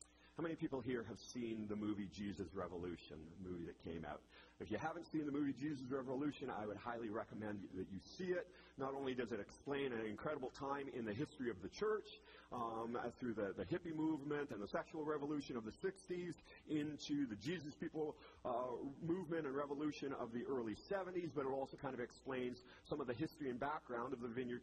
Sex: male